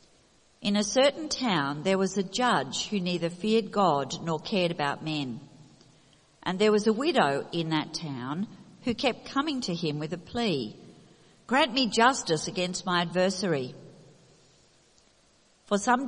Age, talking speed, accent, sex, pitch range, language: 50-69, 150 wpm, Australian, female, 155-215 Hz, English